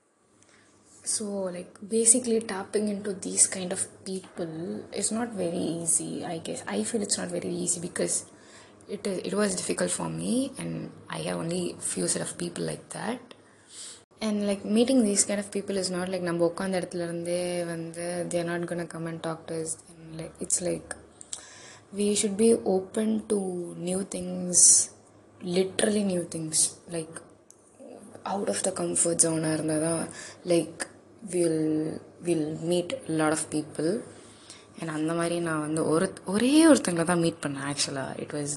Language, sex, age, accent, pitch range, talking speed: Tamil, female, 20-39, native, 160-200 Hz, 160 wpm